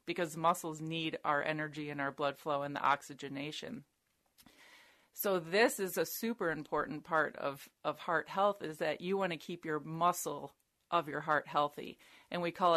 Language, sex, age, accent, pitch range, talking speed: English, female, 30-49, American, 150-175 Hz, 180 wpm